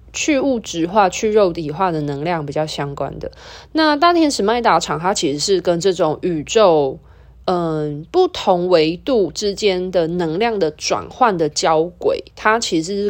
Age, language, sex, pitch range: 20-39, Chinese, female, 155-225 Hz